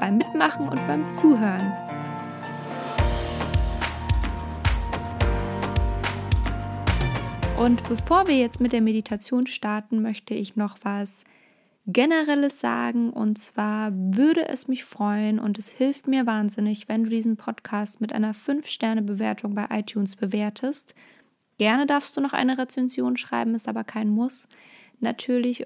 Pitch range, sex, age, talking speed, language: 205-250 Hz, female, 20-39, 120 wpm, German